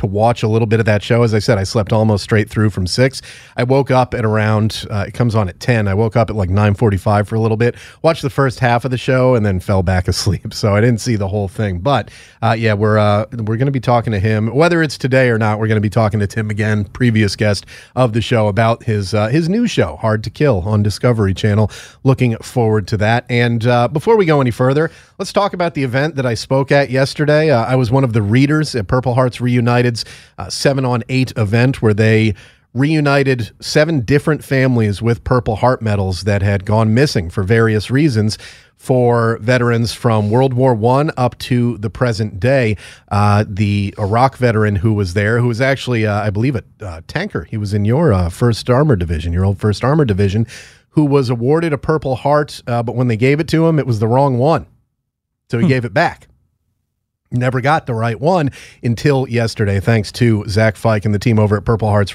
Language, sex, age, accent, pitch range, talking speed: English, male, 30-49, American, 105-130 Hz, 225 wpm